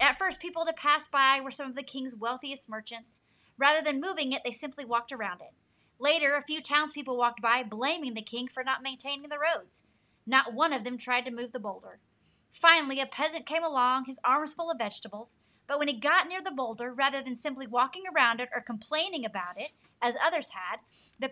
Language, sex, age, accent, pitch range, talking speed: English, female, 30-49, American, 240-315 Hz, 215 wpm